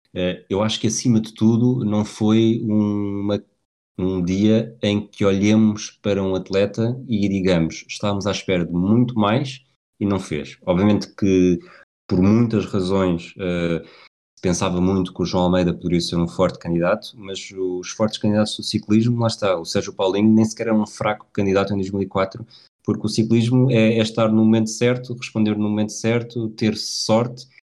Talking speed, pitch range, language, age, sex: 170 wpm, 90-110 Hz, Portuguese, 20-39, male